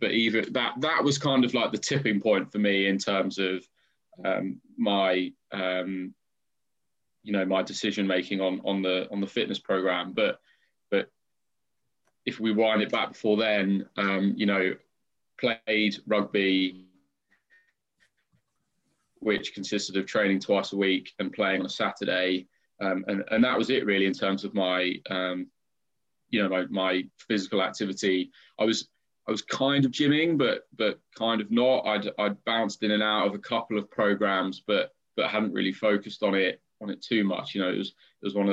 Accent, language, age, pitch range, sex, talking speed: British, English, 20-39, 95-105 Hz, male, 180 wpm